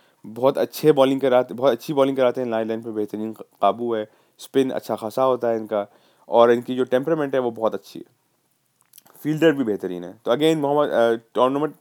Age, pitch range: 20-39, 105-125 Hz